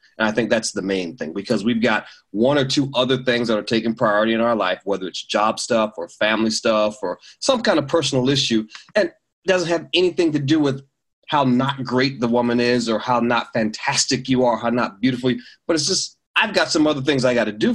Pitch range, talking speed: 120-165 Hz, 235 wpm